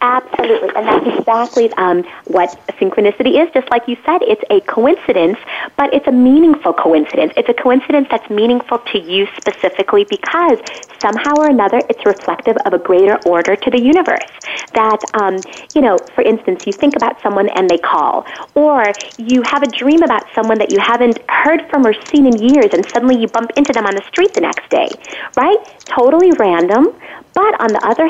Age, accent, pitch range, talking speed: 30-49, American, 200-300 Hz, 190 wpm